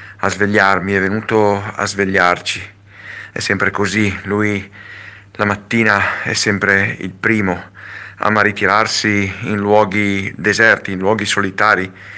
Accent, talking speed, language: native, 115 wpm, Italian